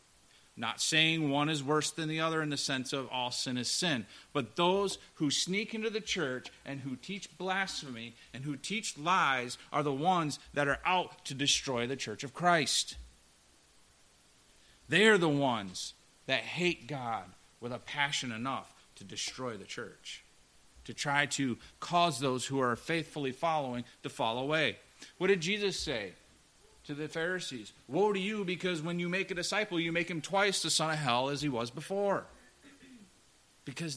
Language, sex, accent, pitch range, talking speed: English, male, American, 125-170 Hz, 175 wpm